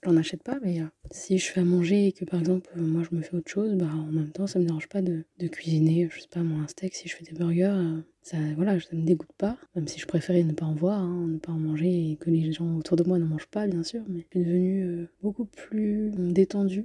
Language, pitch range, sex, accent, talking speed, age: French, 170-195 Hz, female, French, 295 wpm, 20-39